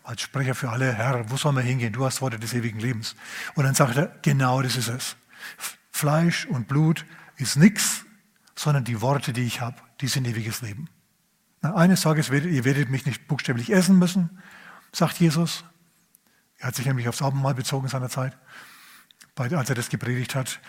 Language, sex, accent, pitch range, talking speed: German, male, German, 130-160 Hz, 185 wpm